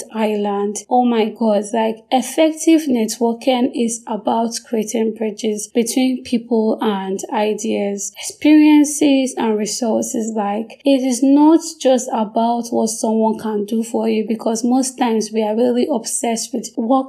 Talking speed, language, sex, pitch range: 135 wpm, English, female, 220-255 Hz